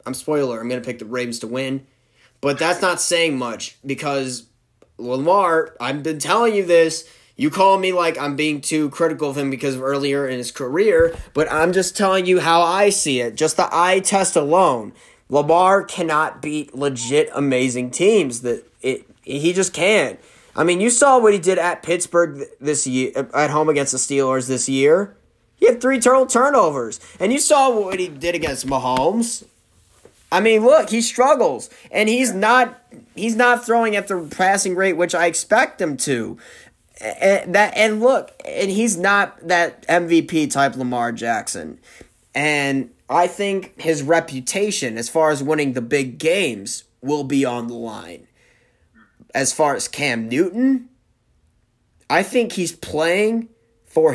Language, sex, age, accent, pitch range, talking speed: English, male, 20-39, American, 130-195 Hz, 170 wpm